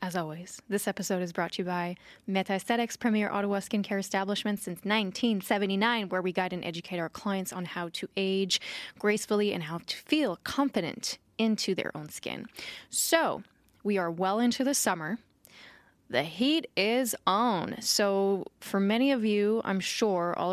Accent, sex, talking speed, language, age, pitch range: American, female, 165 wpm, English, 10-29, 180-225 Hz